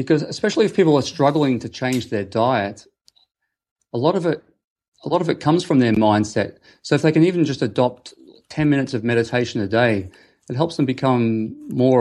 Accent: Australian